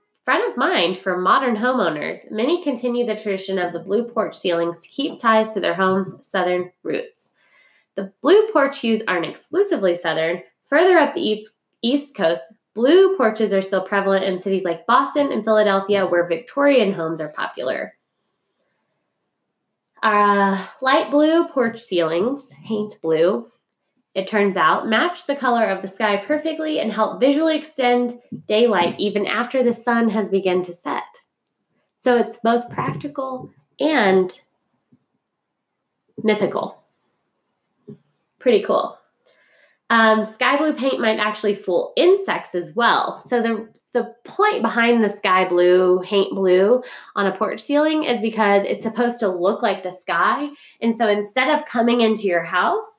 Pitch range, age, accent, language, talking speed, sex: 195-265 Hz, 20-39, American, English, 145 wpm, female